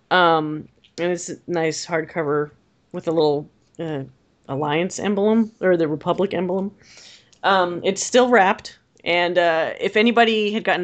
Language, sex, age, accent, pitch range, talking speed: English, female, 30-49, American, 155-200 Hz, 145 wpm